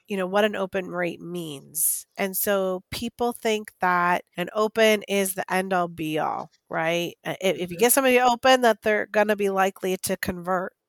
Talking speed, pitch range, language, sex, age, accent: 180 wpm, 190-230 Hz, English, female, 30-49, American